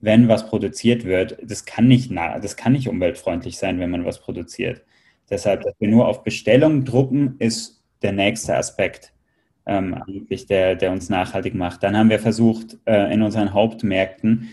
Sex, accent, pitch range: male, German, 100-115 Hz